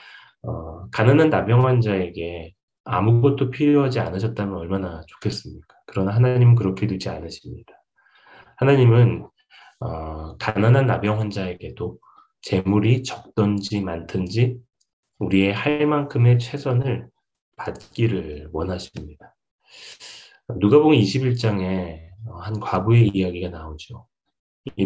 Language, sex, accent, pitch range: Korean, male, native, 95-125 Hz